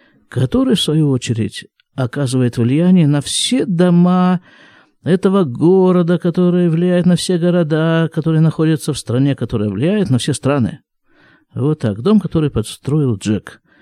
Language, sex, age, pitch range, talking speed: Russian, male, 50-69, 130-185 Hz, 135 wpm